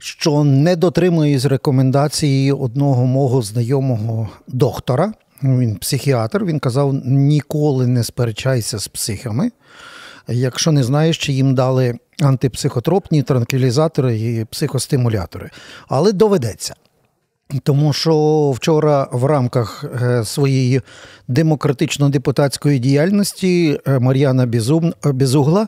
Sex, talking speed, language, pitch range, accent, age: male, 90 wpm, Ukrainian, 130-160 Hz, native, 50-69